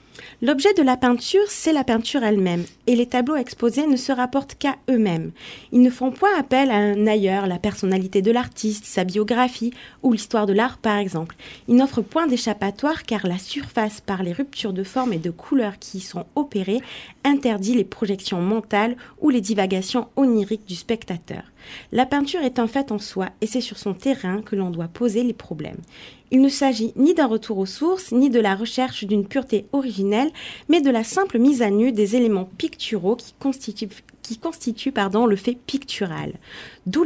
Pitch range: 200-260 Hz